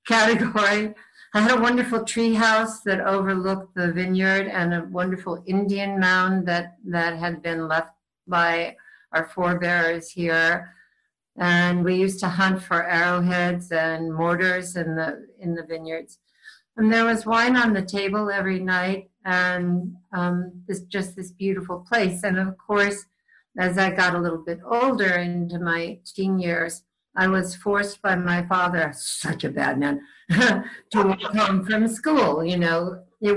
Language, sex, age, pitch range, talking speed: English, female, 60-79, 175-205 Hz, 155 wpm